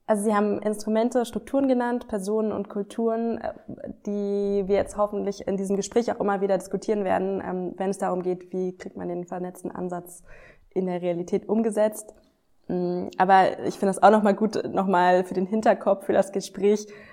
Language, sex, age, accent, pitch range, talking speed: German, female, 20-39, German, 180-210 Hz, 170 wpm